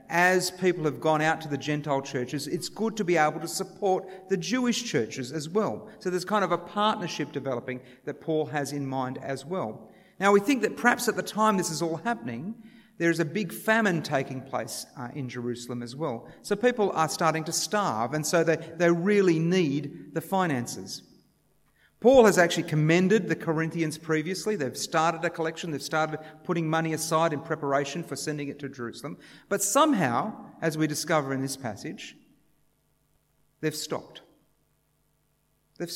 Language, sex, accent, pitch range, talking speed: English, male, Australian, 145-190 Hz, 180 wpm